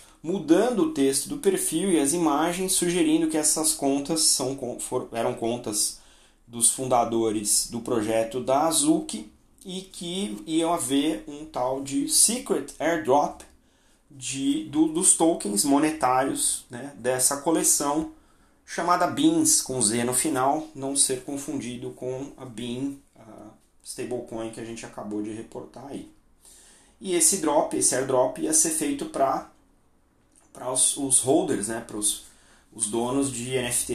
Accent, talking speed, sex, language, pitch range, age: Brazilian, 140 wpm, male, Portuguese, 115-165 Hz, 30-49